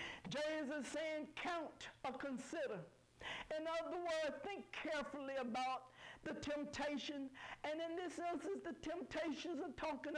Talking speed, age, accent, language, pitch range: 130 wpm, 60-79, American, English, 255-310 Hz